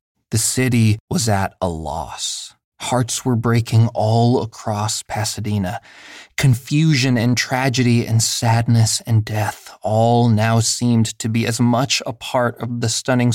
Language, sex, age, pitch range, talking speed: English, male, 20-39, 105-125 Hz, 140 wpm